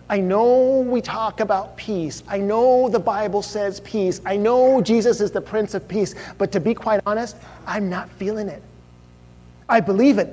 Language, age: English, 30-49